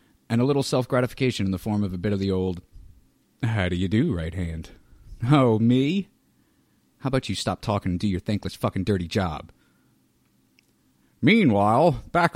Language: English